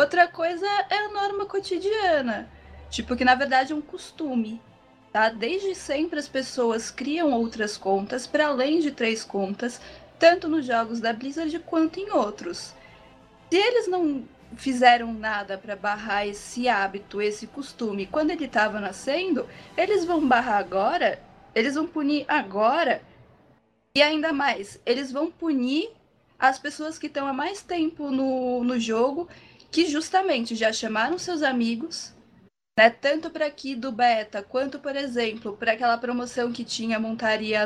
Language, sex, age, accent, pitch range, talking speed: Portuguese, female, 20-39, Brazilian, 230-320 Hz, 150 wpm